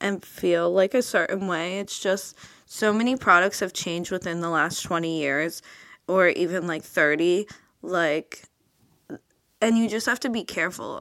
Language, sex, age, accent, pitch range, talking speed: English, female, 20-39, American, 175-220 Hz, 165 wpm